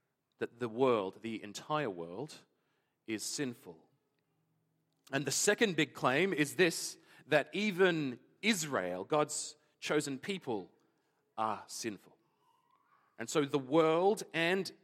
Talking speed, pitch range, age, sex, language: 115 wpm, 145-195 Hz, 40-59, male, English